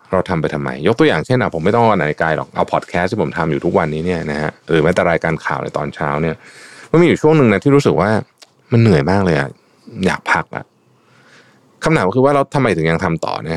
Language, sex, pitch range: Thai, male, 80-135 Hz